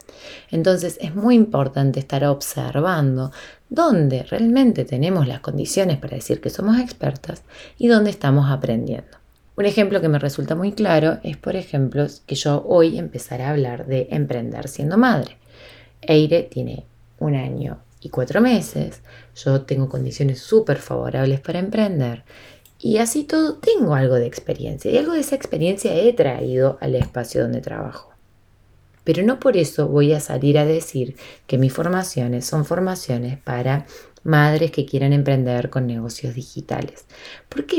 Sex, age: female, 20-39